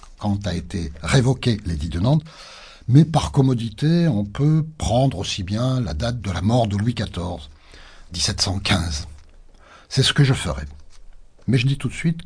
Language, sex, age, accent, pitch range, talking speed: French, male, 60-79, French, 90-135 Hz, 165 wpm